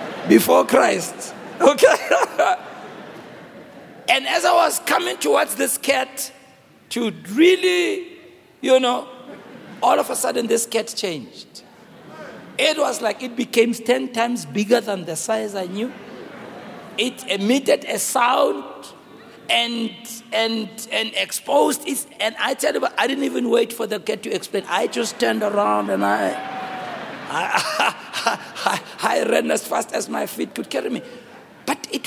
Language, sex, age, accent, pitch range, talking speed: English, male, 60-79, South African, 215-275 Hz, 145 wpm